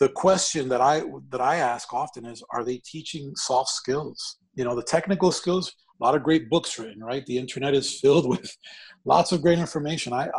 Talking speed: 210 wpm